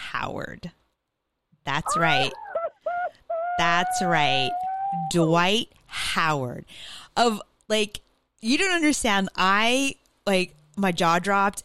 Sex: female